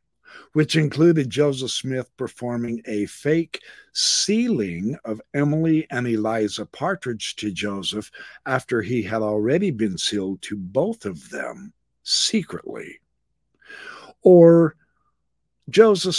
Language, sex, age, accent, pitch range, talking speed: English, male, 50-69, American, 120-155 Hz, 105 wpm